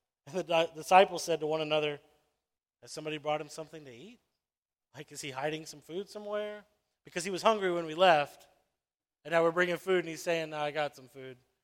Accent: American